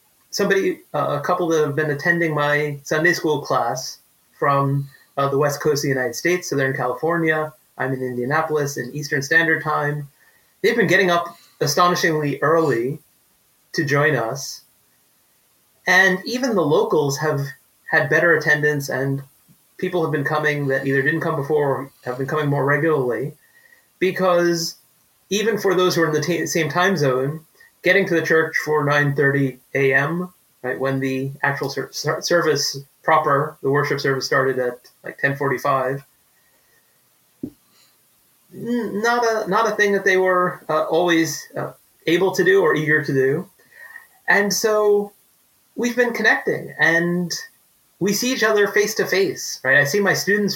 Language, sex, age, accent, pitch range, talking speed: English, male, 30-49, American, 140-185 Hz, 155 wpm